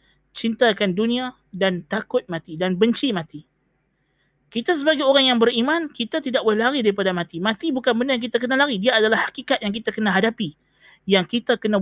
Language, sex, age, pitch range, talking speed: Malay, male, 20-39, 185-240 Hz, 185 wpm